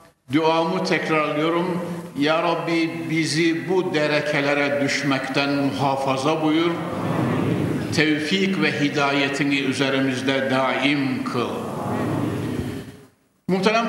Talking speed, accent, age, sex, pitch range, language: 75 wpm, native, 60-79, male, 140-175 Hz, Turkish